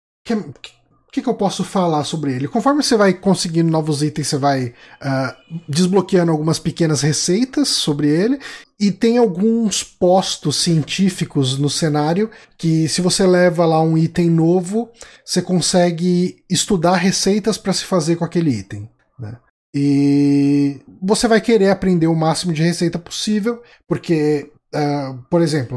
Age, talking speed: 20-39, 150 wpm